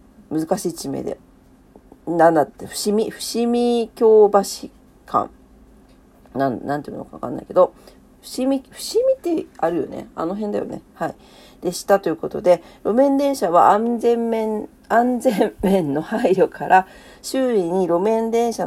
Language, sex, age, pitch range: Japanese, female, 40-59, 165-230 Hz